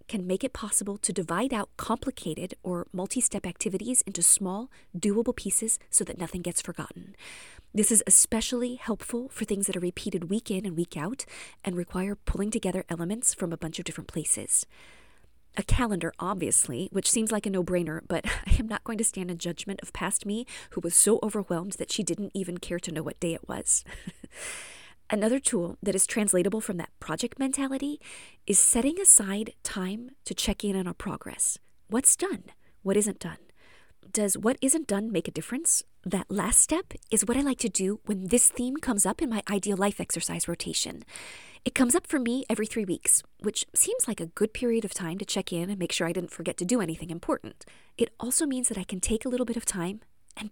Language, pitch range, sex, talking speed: English, 180-235 Hz, female, 205 wpm